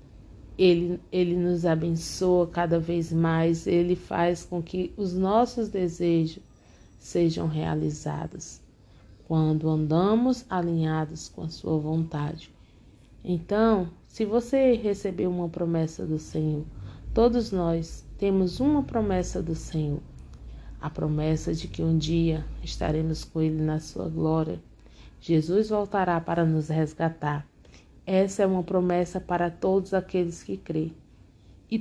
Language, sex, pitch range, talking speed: Portuguese, female, 155-185 Hz, 125 wpm